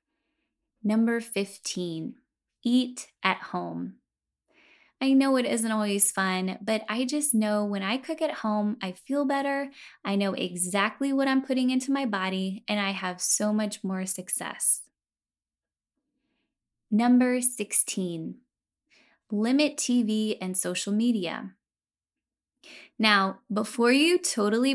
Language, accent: English, American